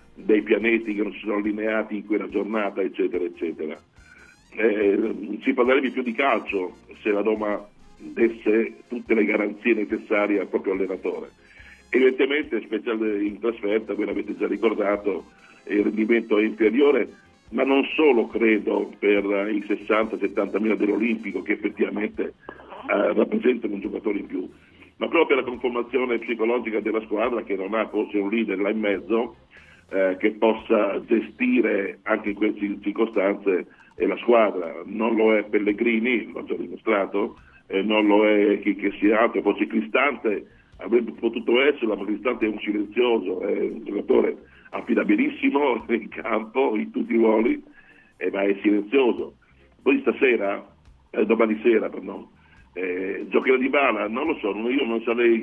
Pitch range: 105-120 Hz